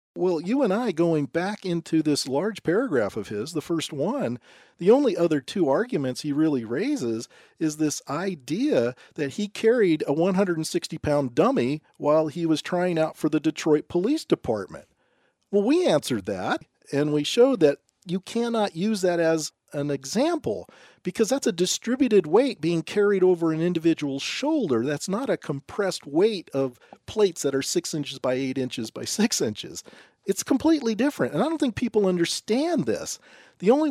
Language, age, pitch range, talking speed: English, 40-59, 140-200 Hz, 170 wpm